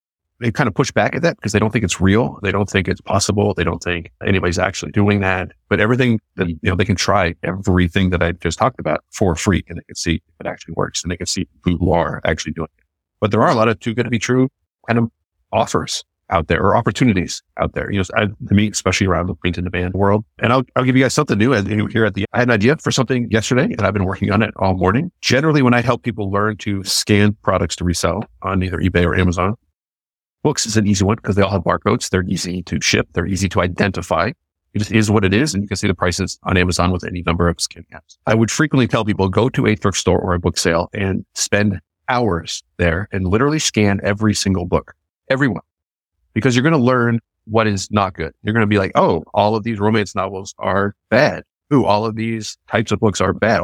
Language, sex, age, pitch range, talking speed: English, male, 40-59, 90-110 Hz, 255 wpm